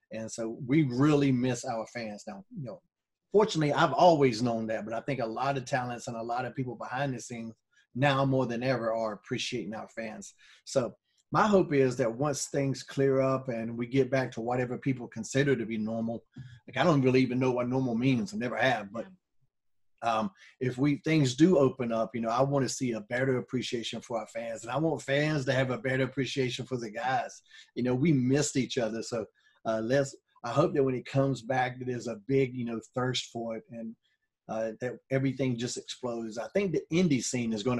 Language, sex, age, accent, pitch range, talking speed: English, male, 30-49, American, 115-140 Hz, 220 wpm